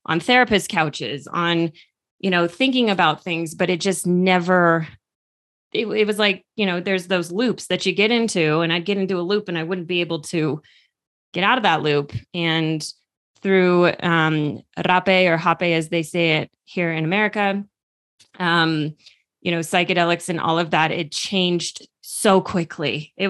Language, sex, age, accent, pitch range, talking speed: English, female, 20-39, American, 160-185 Hz, 180 wpm